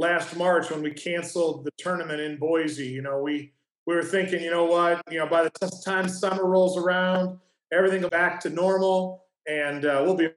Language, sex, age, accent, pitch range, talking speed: English, male, 40-59, American, 160-185 Hz, 205 wpm